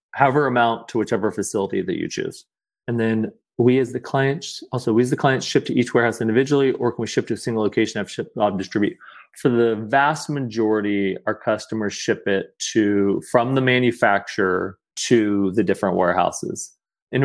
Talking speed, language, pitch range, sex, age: 190 wpm, English, 105-130 Hz, male, 30-49